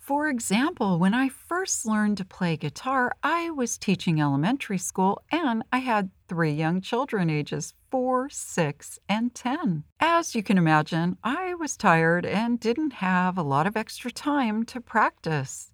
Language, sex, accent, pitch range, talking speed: English, female, American, 170-250 Hz, 160 wpm